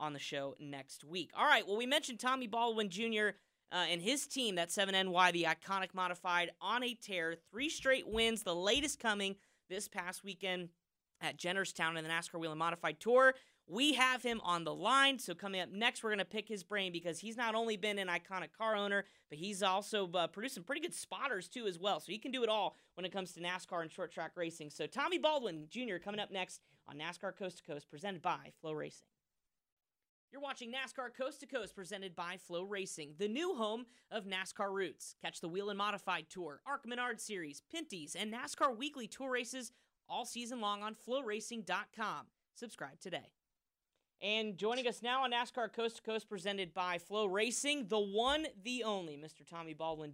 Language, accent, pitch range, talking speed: English, American, 175-235 Hz, 200 wpm